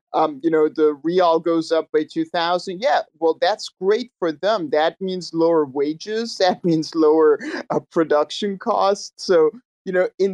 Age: 50-69